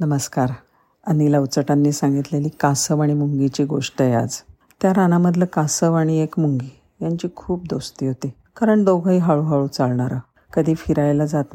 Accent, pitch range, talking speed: native, 140-180 Hz, 140 wpm